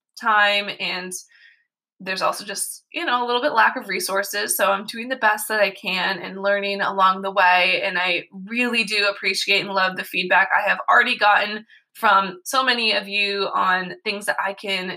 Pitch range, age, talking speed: 190-225 Hz, 20-39, 195 wpm